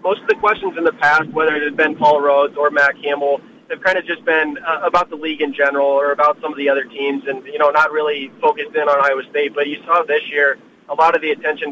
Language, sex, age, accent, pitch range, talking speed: English, male, 20-39, American, 140-165 Hz, 275 wpm